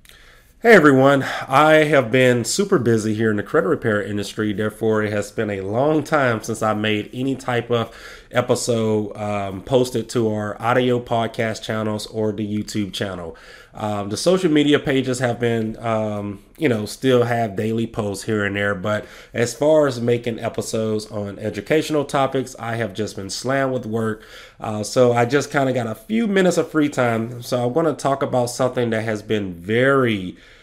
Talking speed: 185 wpm